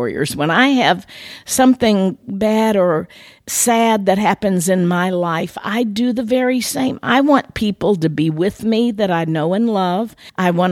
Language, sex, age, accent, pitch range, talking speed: English, female, 50-69, American, 160-220 Hz, 175 wpm